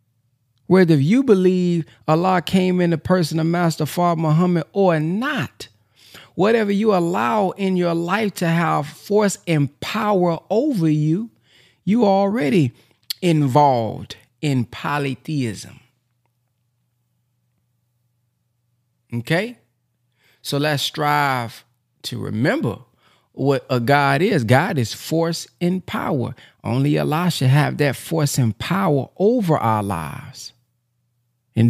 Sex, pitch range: male, 120-155 Hz